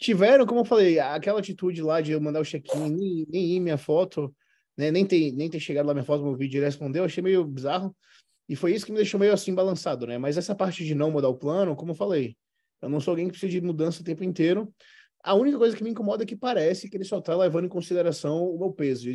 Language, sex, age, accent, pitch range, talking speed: Portuguese, male, 20-39, Brazilian, 135-185 Hz, 275 wpm